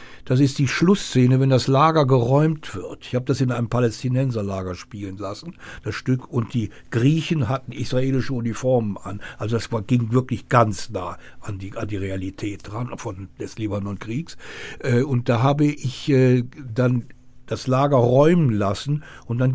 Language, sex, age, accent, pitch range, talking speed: German, male, 60-79, German, 120-150 Hz, 160 wpm